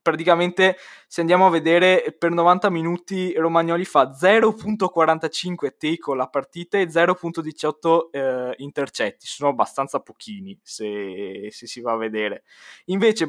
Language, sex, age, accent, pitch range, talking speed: Italian, male, 20-39, native, 130-175 Hz, 120 wpm